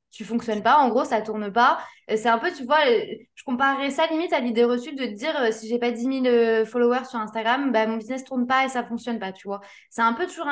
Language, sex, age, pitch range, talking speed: French, female, 20-39, 220-270 Hz, 265 wpm